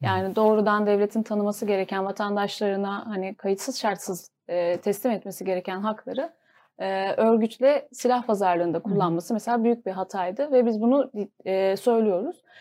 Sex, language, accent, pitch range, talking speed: female, Turkish, native, 195-235 Hz, 120 wpm